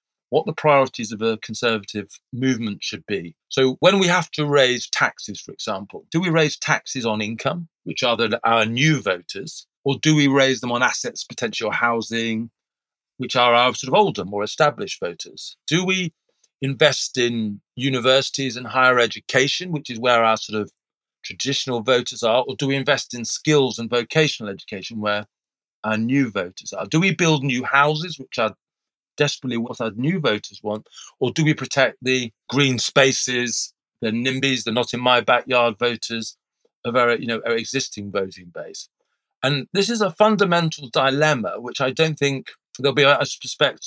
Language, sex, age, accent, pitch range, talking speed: English, male, 40-59, British, 115-145 Hz, 175 wpm